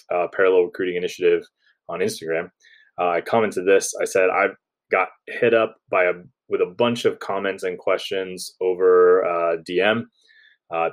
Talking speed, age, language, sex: 155 wpm, 20-39, English, male